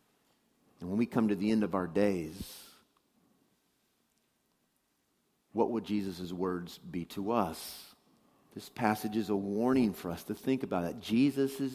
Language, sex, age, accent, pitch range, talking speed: English, male, 50-69, American, 105-160 Hz, 150 wpm